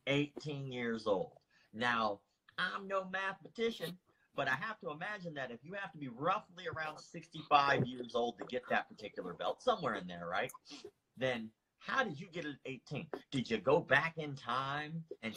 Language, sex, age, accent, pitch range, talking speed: English, male, 30-49, American, 115-155 Hz, 185 wpm